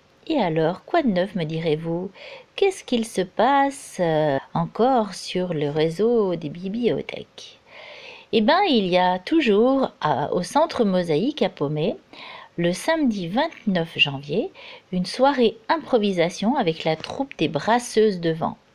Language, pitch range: French, 170-255 Hz